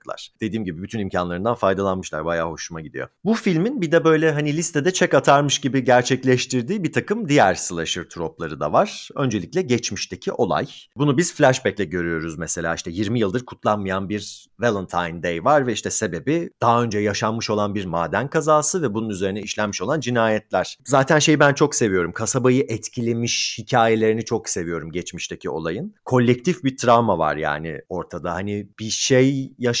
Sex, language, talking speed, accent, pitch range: male, Turkish, 165 wpm, native, 95-145 Hz